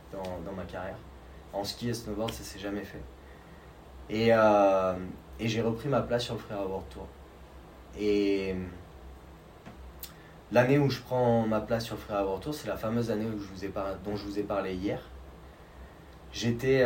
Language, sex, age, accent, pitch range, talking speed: French, male, 20-39, French, 90-115 Hz, 180 wpm